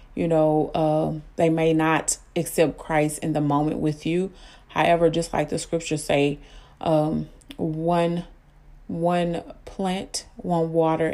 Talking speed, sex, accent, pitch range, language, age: 140 wpm, female, American, 155-170 Hz, English, 30-49